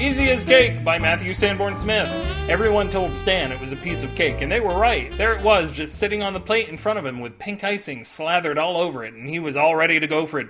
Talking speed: 275 wpm